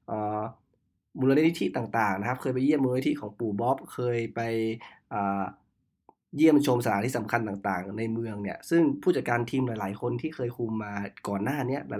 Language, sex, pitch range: Thai, male, 105-130 Hz